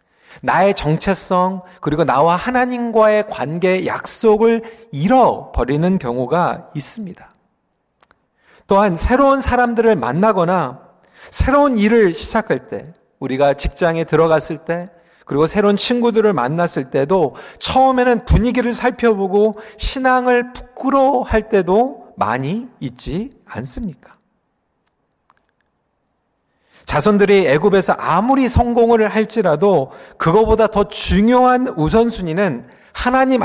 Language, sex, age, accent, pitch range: Korean, male, 40-59, native, 165-235 Hz